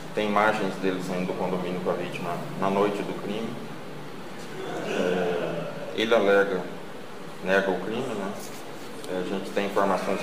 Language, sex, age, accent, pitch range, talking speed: Portuguese, male, 20-39, Brazilian, 95-115 Hz, 135 wpm